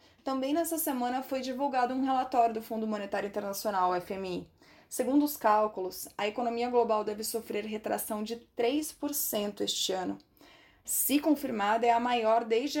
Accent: Brazilian